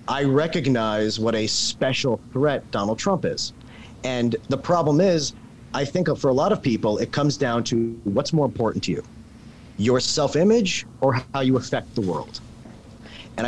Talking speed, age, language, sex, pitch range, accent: 170 wpm, 40-59, English, male, 115-145 Hz, American